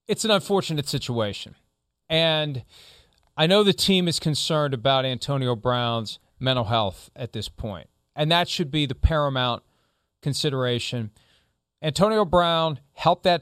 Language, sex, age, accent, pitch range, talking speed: English, male, 40-59, American, 130-165 Hz, 135 wpm